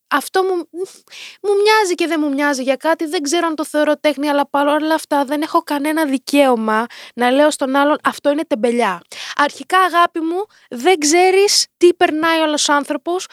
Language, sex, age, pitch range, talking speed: Greek, female, 20-39, 255-345 Hz, 175 wpm